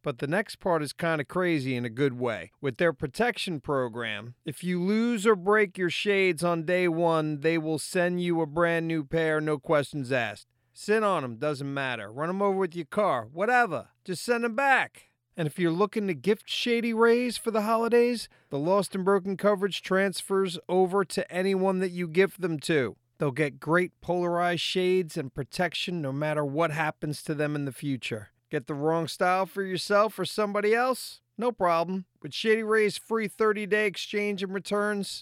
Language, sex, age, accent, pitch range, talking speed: English, male, 40-59, American, 155-205 Hz, 195 wpm